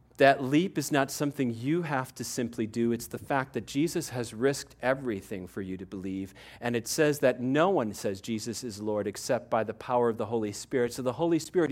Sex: male